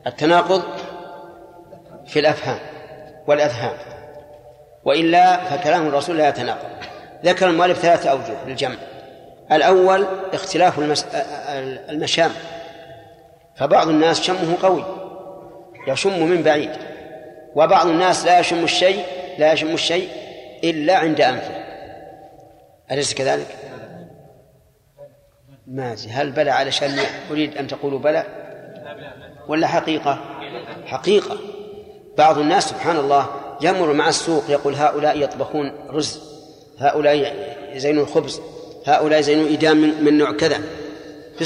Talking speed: 105 wpm